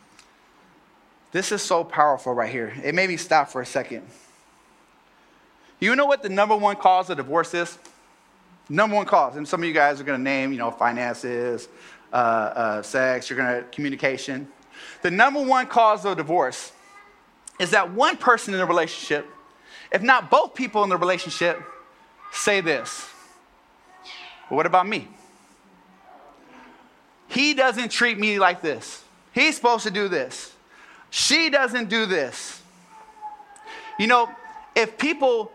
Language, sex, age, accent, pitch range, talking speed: English, male, 20-39, American, 180-270 Hz, 150 wpm